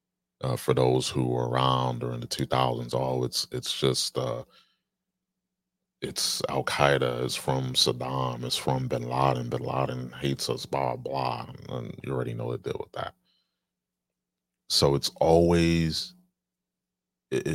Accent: American